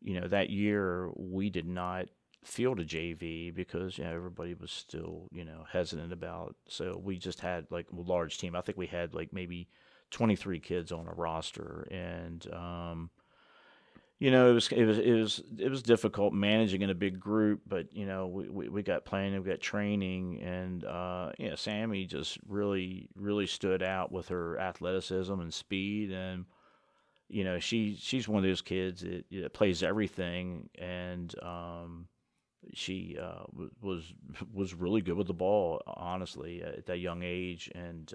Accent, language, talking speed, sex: American, English, 180 wpm, male